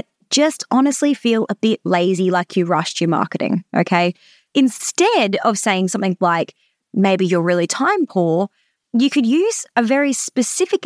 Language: English